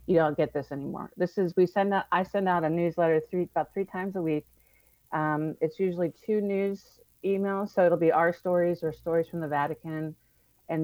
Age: 40-59